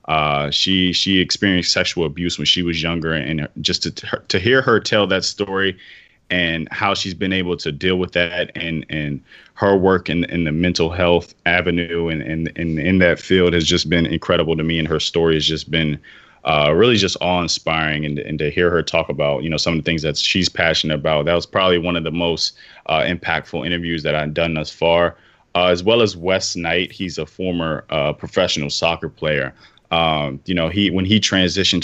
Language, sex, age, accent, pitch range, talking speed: English, male, 20-39, American, 80-90 Hz, 220 wpm